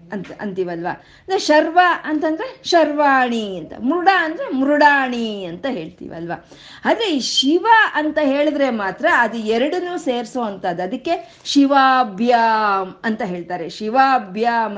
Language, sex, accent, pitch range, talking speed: Kannada, female, native, 215-300 Hz, 105 wpm